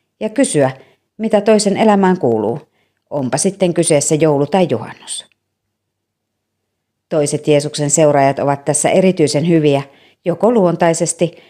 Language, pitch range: Finnish, 130-180 Hz